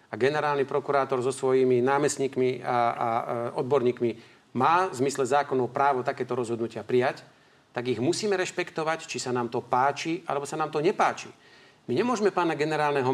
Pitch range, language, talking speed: 130-175 Hz, Slovak, 165 wpm